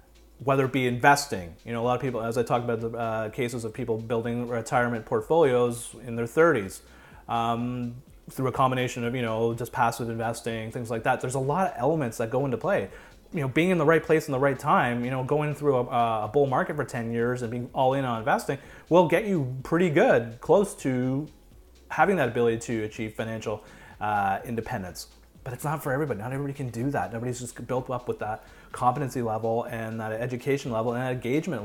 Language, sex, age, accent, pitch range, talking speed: English, male, 30-49, American, 115-150 Hz, 220 wpm